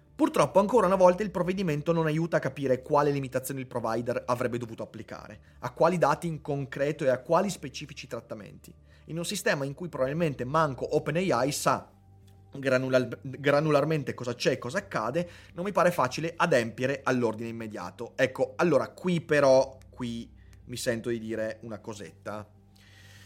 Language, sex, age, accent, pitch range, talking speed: Italian, male, 30-49, native, 120-155 Hz, 155 wpm